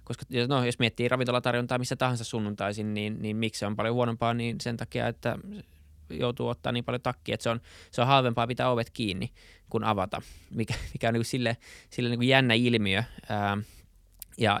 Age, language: 20-39, Finnish